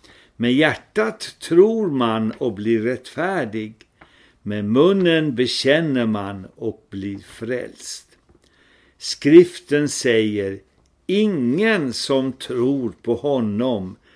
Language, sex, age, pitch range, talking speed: Swedish, male, 60-79, 110-170 Hz, 90 wpm